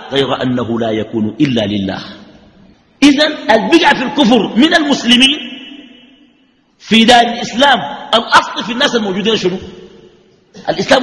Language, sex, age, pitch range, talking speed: Arabic, male, 50-69, 165-245 Hz, 120 wpm